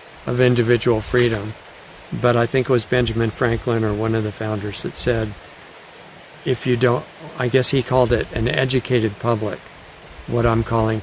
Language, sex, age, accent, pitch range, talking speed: English, male, 60-79, American, 105-125 Hz, 170 wpm